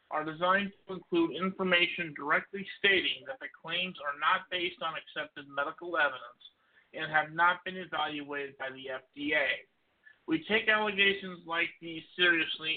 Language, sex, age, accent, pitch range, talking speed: English, male, 50-69, American, 160-195 Hz, 145 wpm